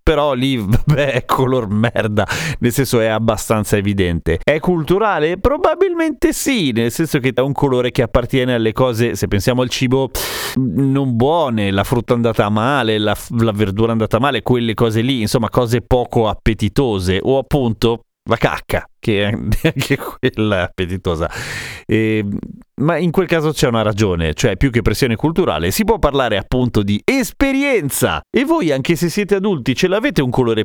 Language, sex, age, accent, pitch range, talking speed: Italian, male, 30-49, native, 105-145 Hz, 170 wpm